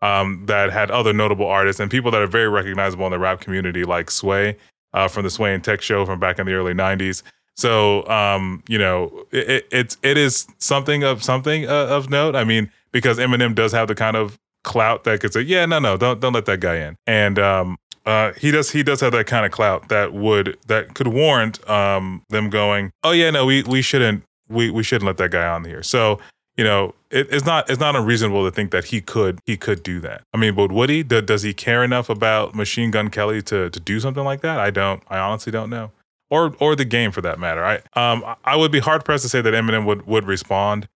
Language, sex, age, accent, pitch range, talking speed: English, male, 20-39, American, 100-125 Hz, 240 wpm